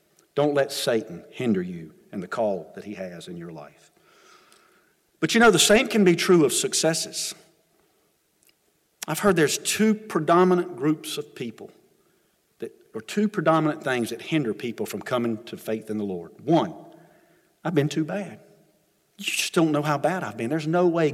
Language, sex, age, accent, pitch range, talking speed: English, male, 50-69, American, 145-195 Hz, 180 wpm